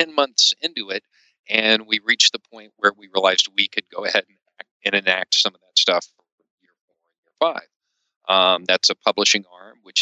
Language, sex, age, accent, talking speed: English, male, 40-59, American, 210 wpm